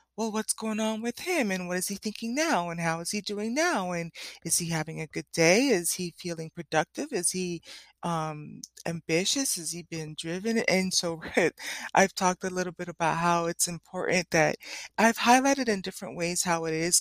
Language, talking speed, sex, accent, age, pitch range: English, 200 wpm, female, American, 20-39, 170-225 Hz